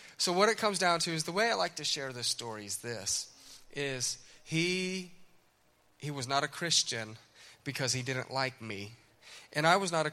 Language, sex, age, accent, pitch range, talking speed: English, male, 30-49, American, 120-155 Hz, 200 wpm